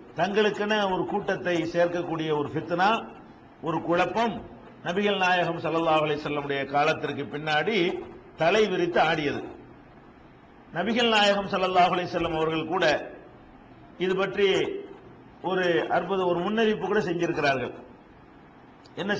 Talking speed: 95 wpm